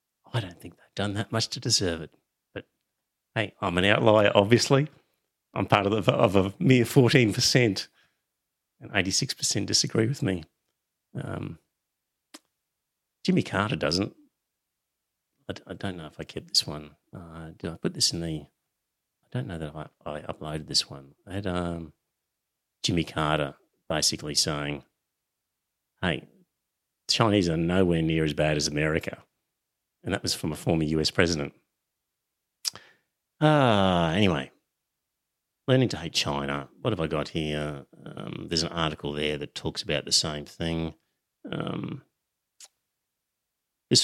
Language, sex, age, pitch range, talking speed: English, male, 40-59, 75-100 Hz, 145 wpm